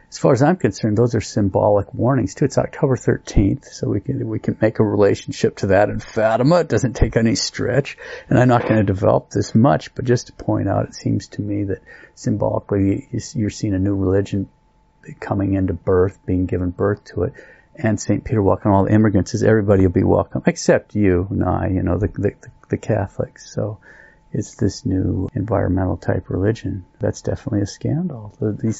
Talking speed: 200 wpm